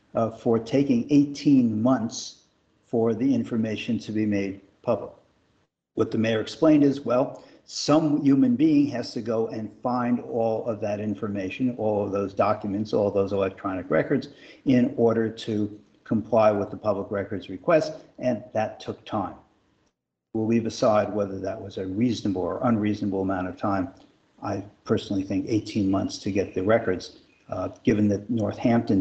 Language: English